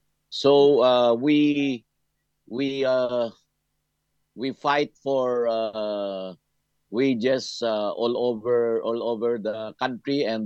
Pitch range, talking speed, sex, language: 100-125 Hz, 105 wpm, male, English